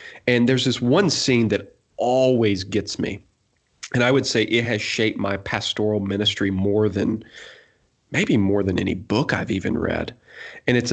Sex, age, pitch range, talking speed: male, 30-49, 100-120 Hz, 170 wpm